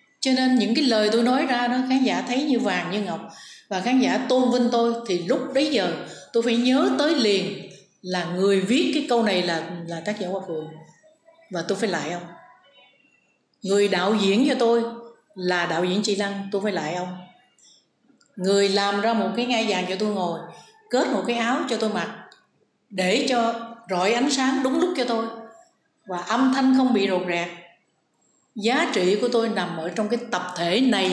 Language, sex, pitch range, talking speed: Vietnamese, female, 190-245 Hz, 205 wpm